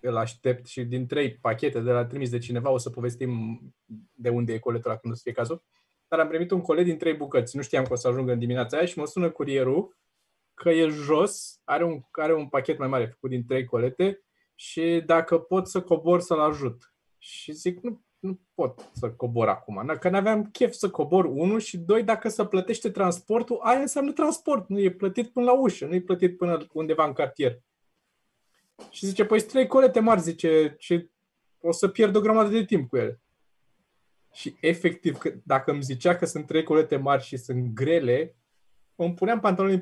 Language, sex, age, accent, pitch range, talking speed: Romanian, male, 20-39, native, 135-195 Hz, 200 wpm